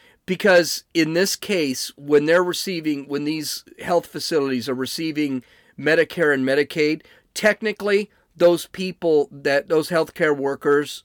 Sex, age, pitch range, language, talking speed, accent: male, 40-59, 135-175 Hz, English, 125 wpm, American